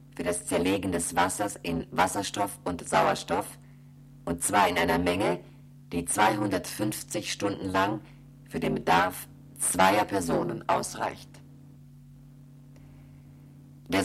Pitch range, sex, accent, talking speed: 100-140 Hz, female, German, 105 wpm